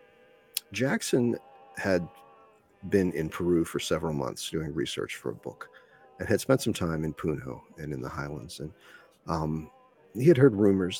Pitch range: 80-130 Hz